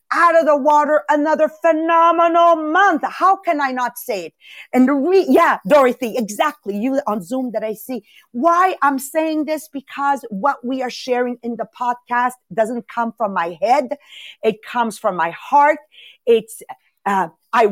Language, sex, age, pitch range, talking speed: English, female, 40-59, 245-335 Hz, 170 wpm